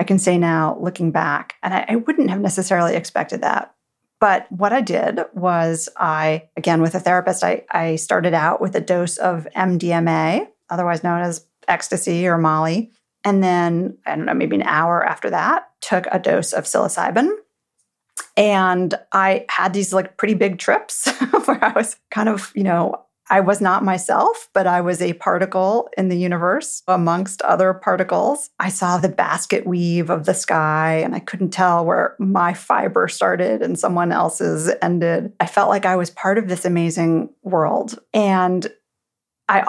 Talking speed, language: 175 wpm, English